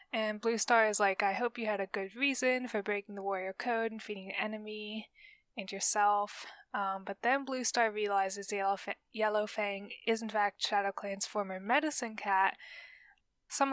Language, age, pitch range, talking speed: English, 10-29, 200-235 Hz, 180 wpm